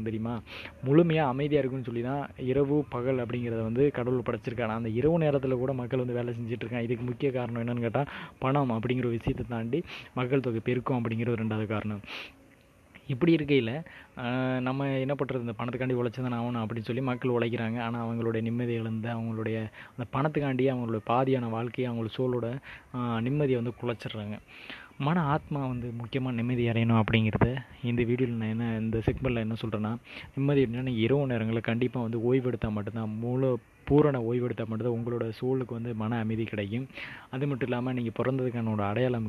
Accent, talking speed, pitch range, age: native, 155 wpm, 115-130 Hz, 20-39